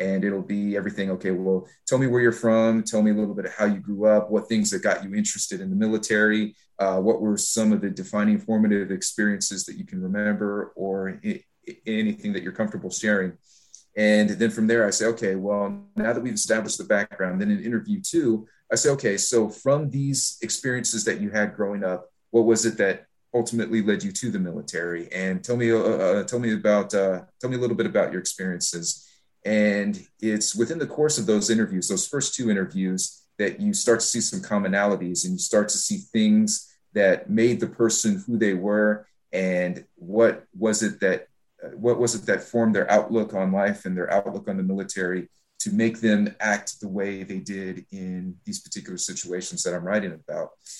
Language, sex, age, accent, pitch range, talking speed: English, male, 30-49, American, 100-120 Hz, 205 wpm